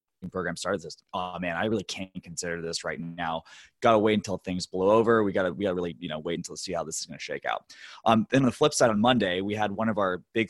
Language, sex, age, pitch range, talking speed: English, male, 20-39, 90-115 Hz, 280 wpm